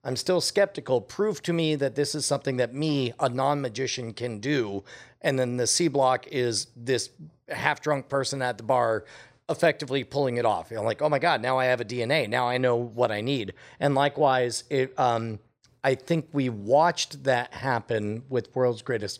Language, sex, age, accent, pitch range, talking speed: English, male, 40-59, American, 120-150 Hz, 195 wpm